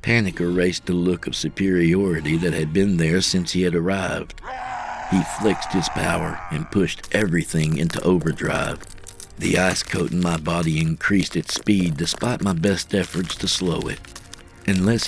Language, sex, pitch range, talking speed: English, male, 85-95 Hz, 160 wpm